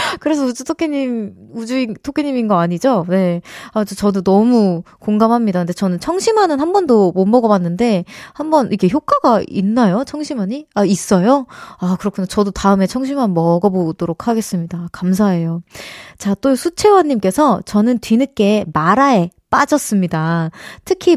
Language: Korean